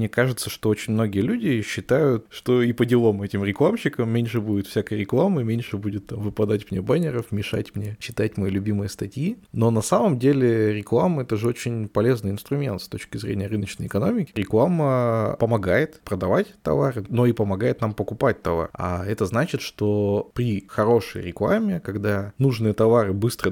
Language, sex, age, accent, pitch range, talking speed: Russian, male, 20-39, native, 100-120 Hz, 170 wpm